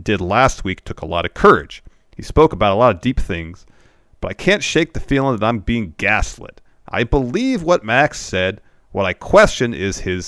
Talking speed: 210 wpm